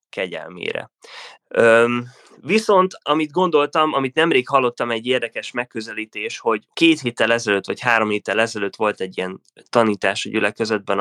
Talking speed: 135 wpm